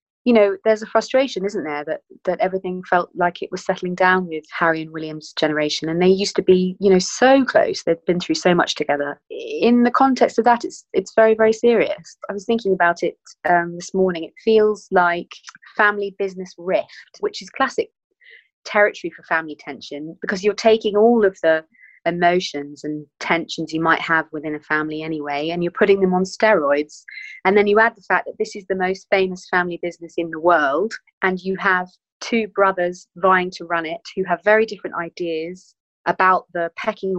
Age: 30-49